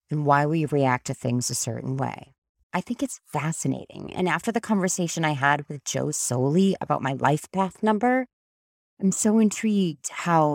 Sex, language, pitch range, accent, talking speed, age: female, English, 140-190 Hz, American, 175 wpm, 30-49